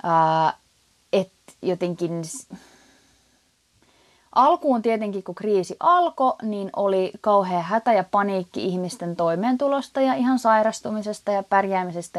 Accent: native